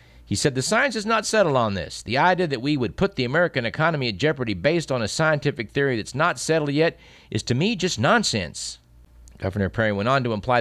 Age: 50-69